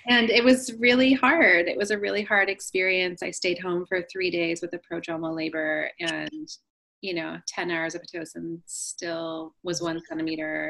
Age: 30-49